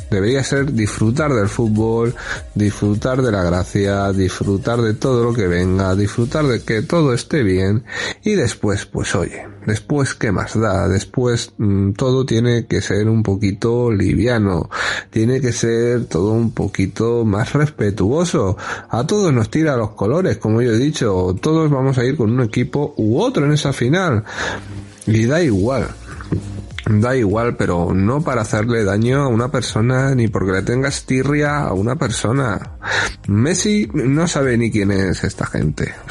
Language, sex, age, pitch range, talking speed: Spanish, male, 30-49, 100-125 Hz, 165 wpm